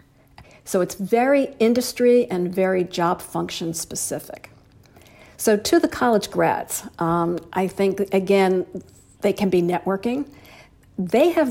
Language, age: English, 50-69